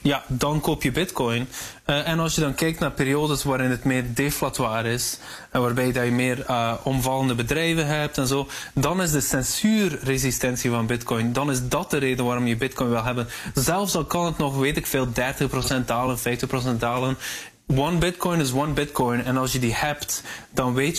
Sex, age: male, 20-39